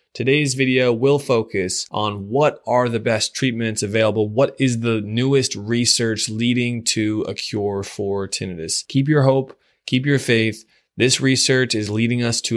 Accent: American